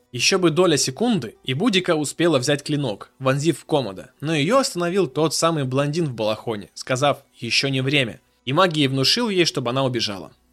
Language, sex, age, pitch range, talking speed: Russian, male, 20-39, 125-170 Hz, 175 wpm